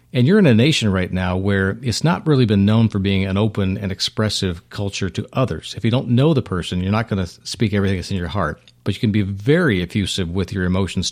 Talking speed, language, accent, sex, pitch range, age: 255 wpm, English, American, male, 95-120 Hz, 40-59